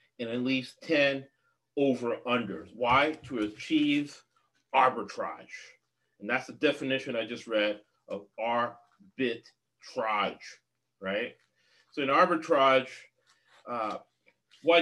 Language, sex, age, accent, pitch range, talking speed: English, male, 40-59, American, 110-150 Hz, 95 wpm